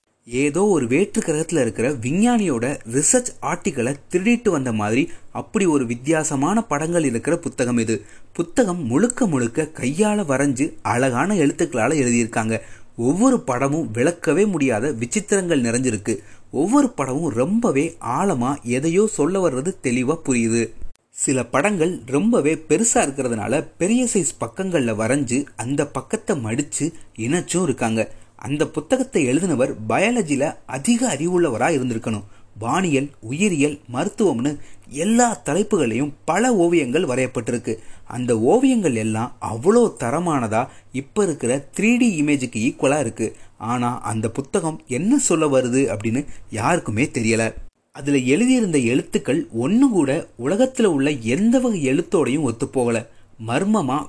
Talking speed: 110 wpm